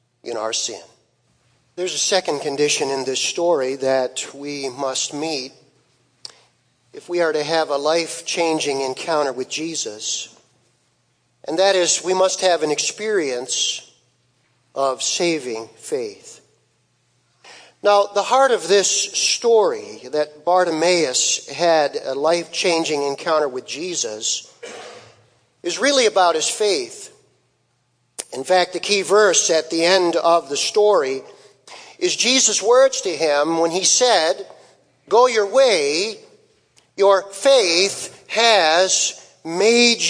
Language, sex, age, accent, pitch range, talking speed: English, male, 50-69, American, 160-265 Hz, 125 wpm